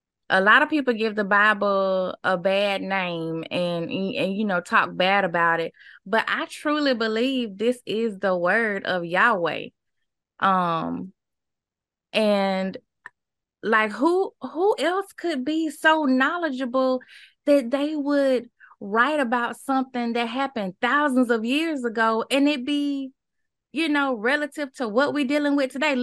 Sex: female